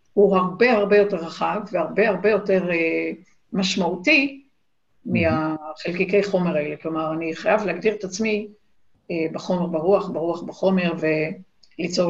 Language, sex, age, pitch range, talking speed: Hebrew, female, 50-69, 185-240 Hz, 125 wpm